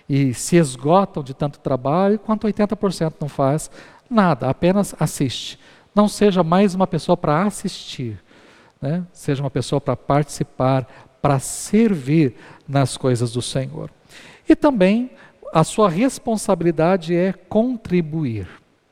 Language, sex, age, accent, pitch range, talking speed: Portuguese, male, 50-69, Brazilian, 130-180 Hz, 125 wpm